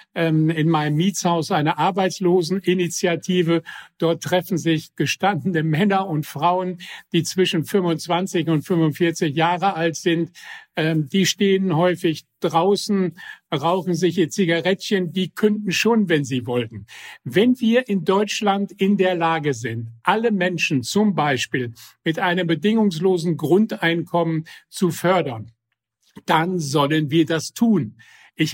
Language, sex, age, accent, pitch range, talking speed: German, male, 50-69, German, 155-190 Hz, 120 wpm